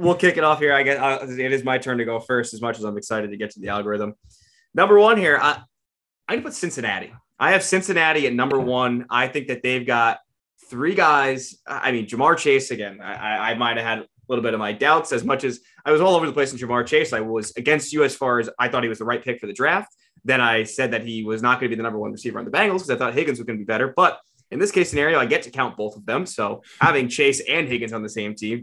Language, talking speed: English, 285 wpm